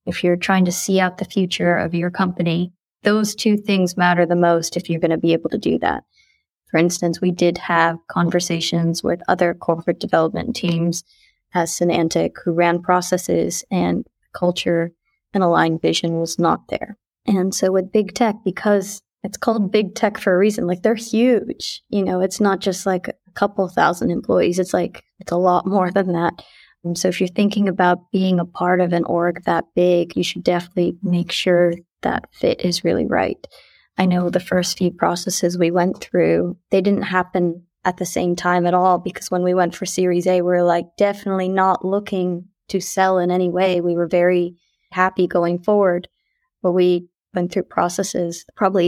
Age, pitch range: 20-39, 175-195 Hz